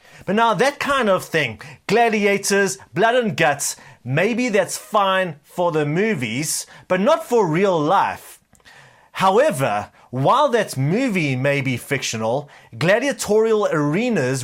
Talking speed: 125 wpm